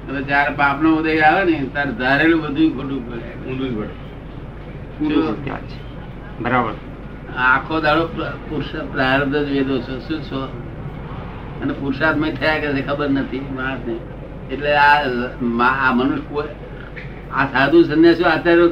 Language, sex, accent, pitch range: Gujarati, male, native, 140-160 Hz